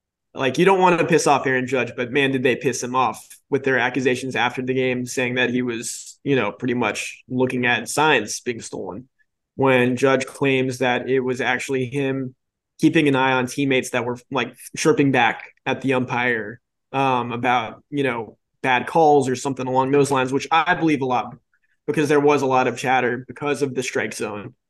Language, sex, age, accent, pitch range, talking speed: English, male, 20-39, American, 125-145 Hz, 205 wpm